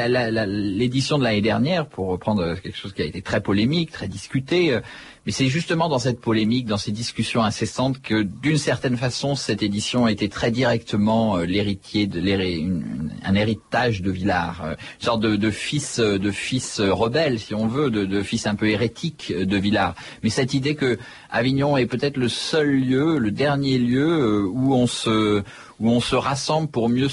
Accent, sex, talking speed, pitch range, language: French, male, 185 wpm, 100-130 Hz, French